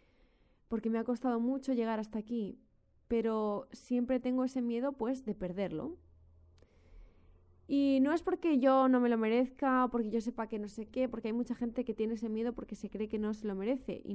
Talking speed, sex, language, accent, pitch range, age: 210 wpm, female, Spanish, Spanish, 195-260 Hz, 20-39